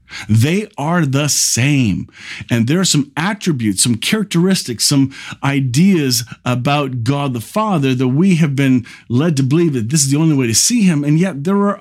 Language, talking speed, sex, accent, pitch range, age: English, 190 wpm, male, American, 125-170 Hz, 40-59